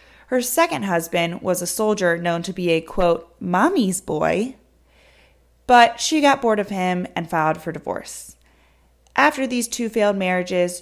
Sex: female